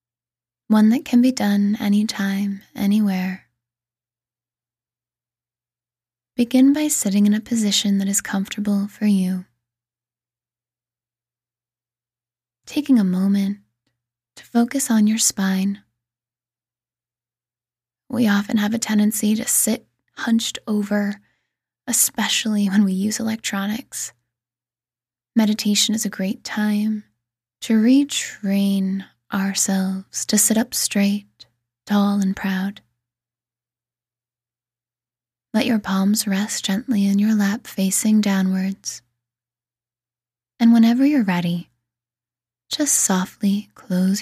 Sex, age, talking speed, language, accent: female, 20-39, 100 wpm, English, American